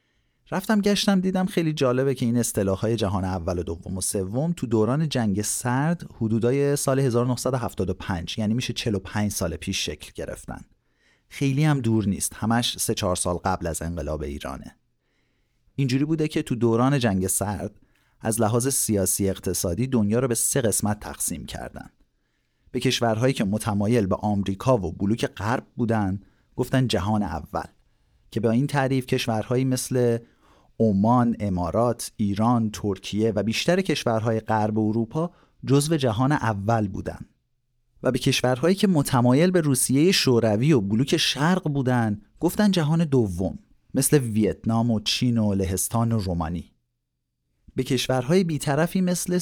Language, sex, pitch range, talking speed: Persian, male, 100-130 Hz, 145 wpm